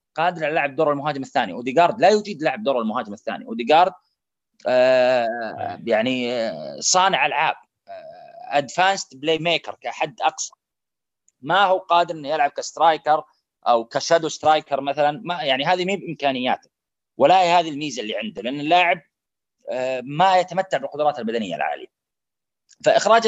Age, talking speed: 30-49, 130 wpm